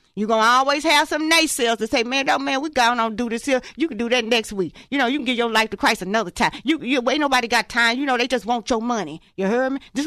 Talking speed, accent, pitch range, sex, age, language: 310 wpm, American, 235-305 Hz, female, 40-59, English